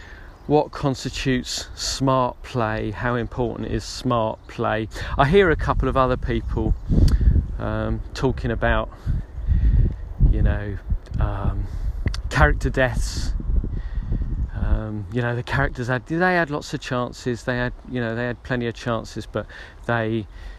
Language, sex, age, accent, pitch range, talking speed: English, male, 40-59, British, 90-120 Hz, 135 wpm